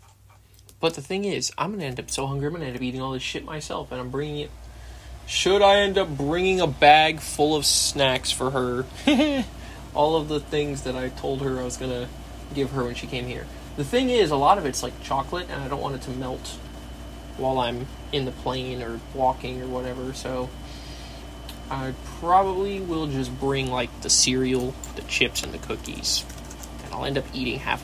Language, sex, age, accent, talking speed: English, male, 20-39, American, 215 wpm